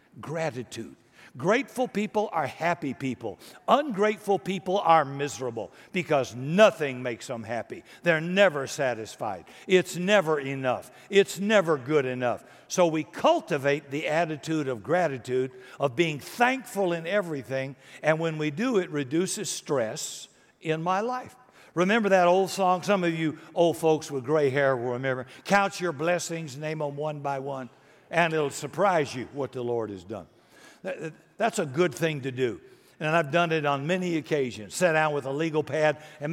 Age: 60-79